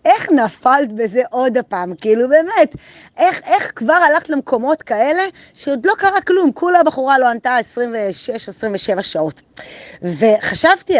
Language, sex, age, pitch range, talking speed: Hebrew, female, 30-49, 210-305 Hz, 130 wpm